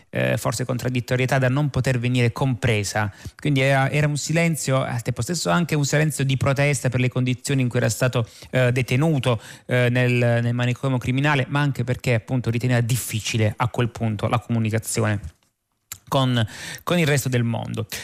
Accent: native